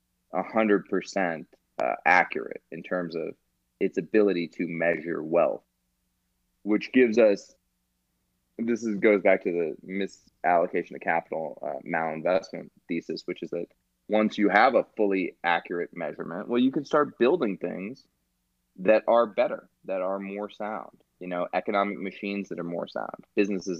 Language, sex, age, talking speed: English, male, 20-39, 145 wpm